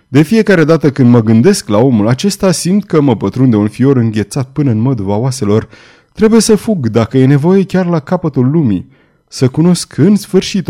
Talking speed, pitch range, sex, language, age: 190 wpm, 115-165 Hz, male, Romanian, 30-49